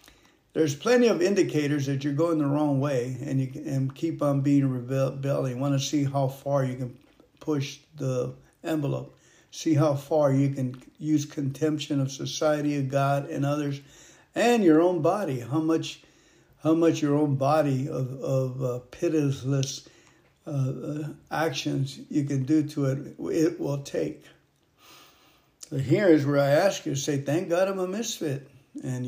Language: English